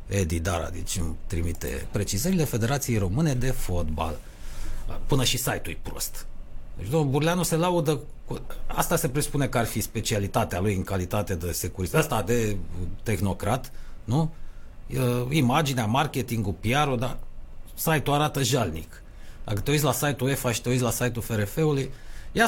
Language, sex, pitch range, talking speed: Romanian, male, 95-150 Hz, 145 wpm